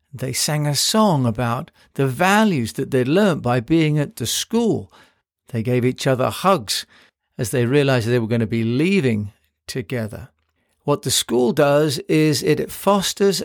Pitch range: 125-165 Hz